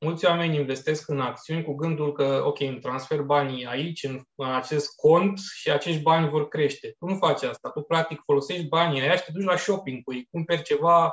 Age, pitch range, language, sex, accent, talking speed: 20-39, 140-185 Hz, Romanian, male, native, 210 wpm